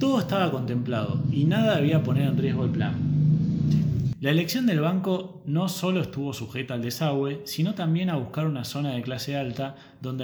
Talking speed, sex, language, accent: 180 wpm, male, Spanish, Argentinian